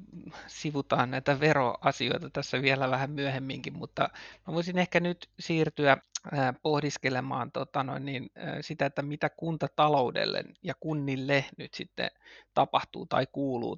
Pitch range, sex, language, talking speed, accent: 135-155 Hz, male, Finnish, 120 wpm, native